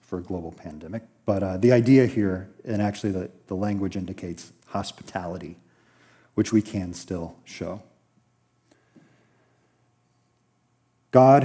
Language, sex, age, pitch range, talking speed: English, male, 40-59, 100-135 Hz, 115 wpm